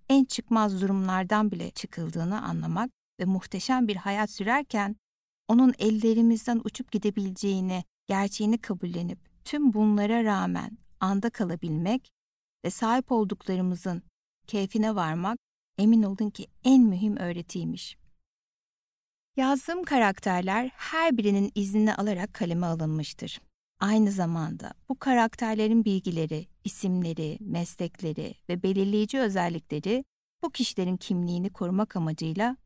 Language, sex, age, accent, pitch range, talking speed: Turkish, female, 60-79, native, 180-230 Hz, 105 wpm